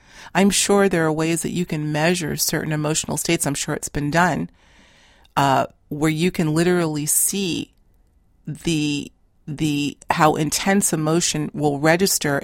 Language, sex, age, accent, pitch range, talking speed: English, female, 40-59, American, 150-190 Hz, 145 wpm